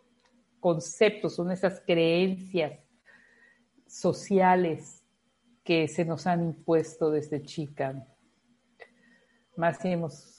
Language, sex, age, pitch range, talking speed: Spanish, female, 50-69, 155-235 Hz, 85 wpm